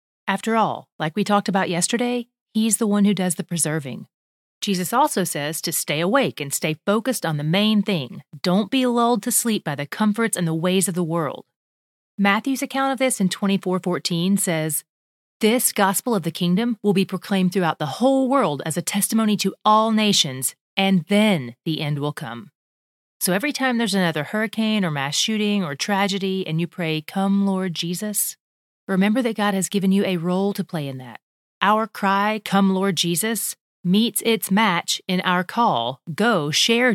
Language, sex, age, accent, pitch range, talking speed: English, female, 30-49, American, 175-225 Hz, 190 wpm